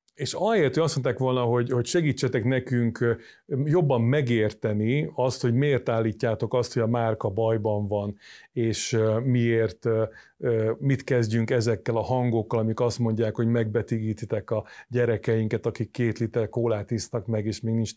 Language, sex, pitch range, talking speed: Hungarian, male, 110-130 Hz, 150 wpm